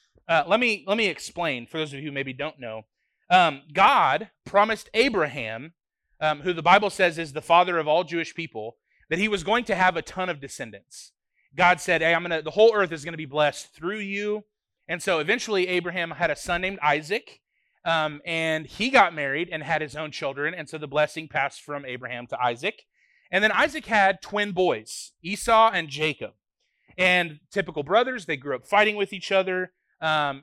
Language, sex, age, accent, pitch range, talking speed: English, male, 30-49, American, 150-195 Hz, 205 wpm